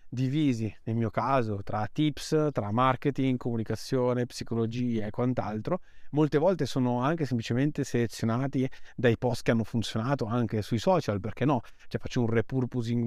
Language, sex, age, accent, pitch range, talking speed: Italian, male, 30-49, native, 115-140 Hz, 145 wpm